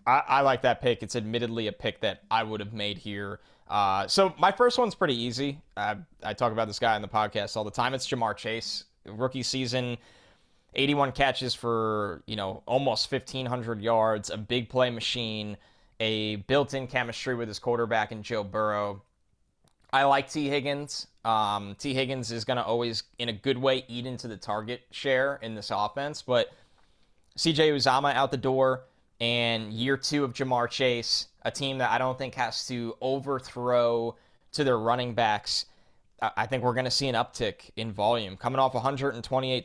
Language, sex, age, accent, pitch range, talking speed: English, male, 20-39, American, 115-135 Hz, 185 wpm